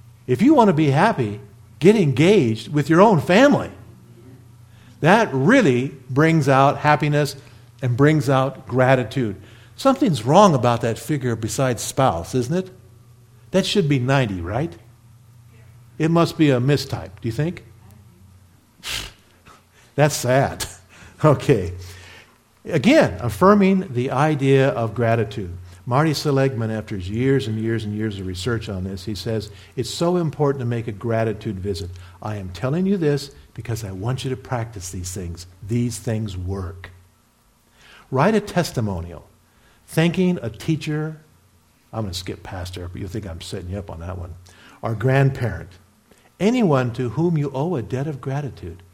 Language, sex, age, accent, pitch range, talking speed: English, male, 50-69, American, 105-150 Hz, 150 wpm